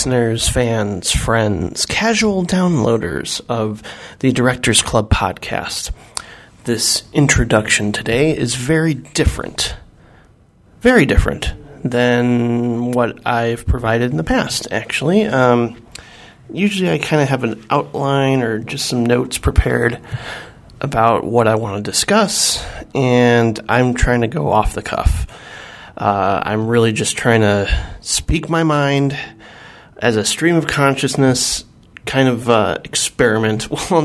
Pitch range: 110-140 Hz